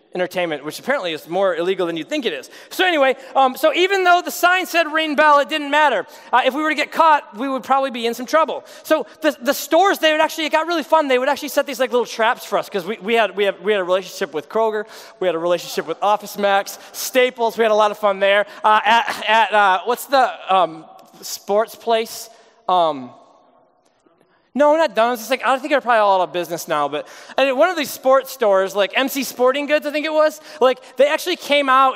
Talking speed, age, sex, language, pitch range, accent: 245 wpm, 20-39, male, English, 215-295 Hz, American